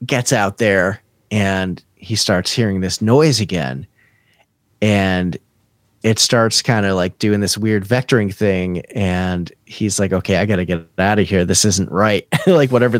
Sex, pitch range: male, 100-120 Hz